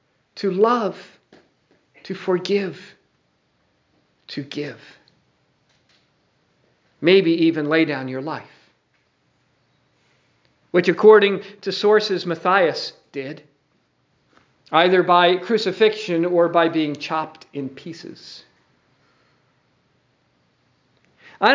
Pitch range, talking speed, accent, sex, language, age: 155-235 Hz, 80 wpm, American, male, English, 50-69